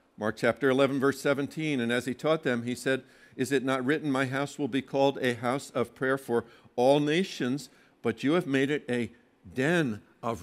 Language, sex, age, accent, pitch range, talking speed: English, male, 60-79, American, 135-195 Hz, 205 wpm